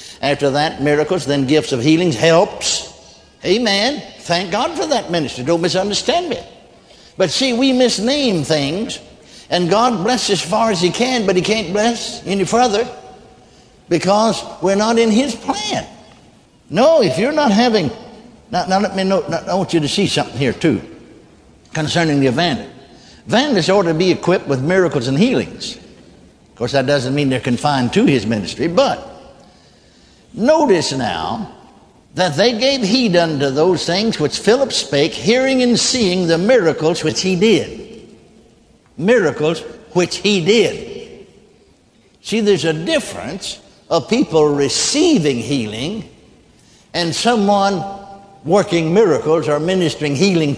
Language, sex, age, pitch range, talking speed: English, male, 60-79, 160-230 Hz, 145 wpm